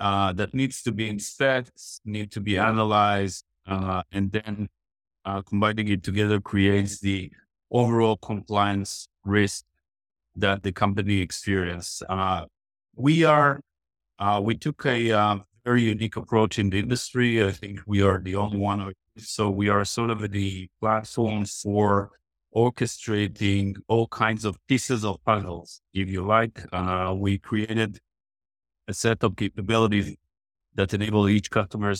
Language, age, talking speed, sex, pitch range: English, 50-69, 140 wpm, male, 100-110 Hz